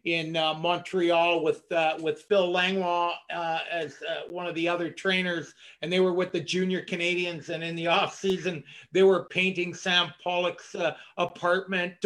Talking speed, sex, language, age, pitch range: 175 wpm, male, English, 50-69, 170-195 Hz